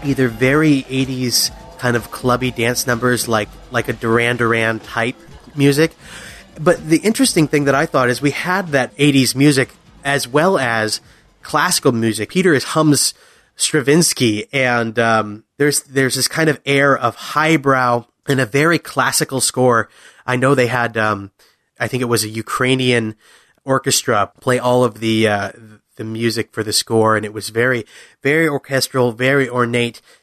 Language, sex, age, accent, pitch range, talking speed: English, male, 30-49, American, 115-135 Hz, 165 wpm